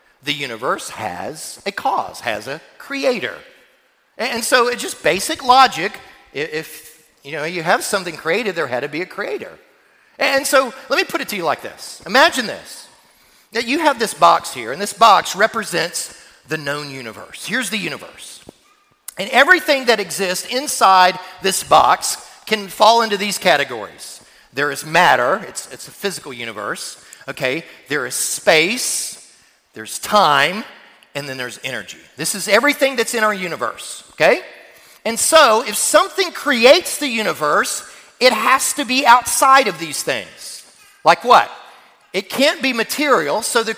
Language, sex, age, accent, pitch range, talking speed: English, male, 40-59, American, 220-300 Hz, 160 wpm